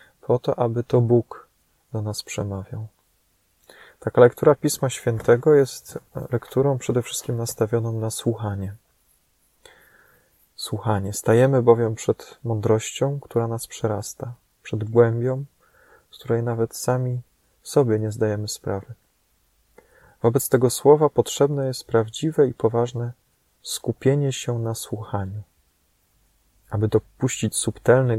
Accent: native